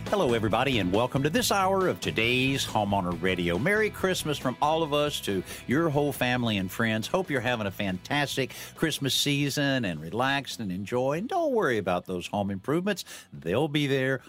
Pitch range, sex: 105-150 Hz, male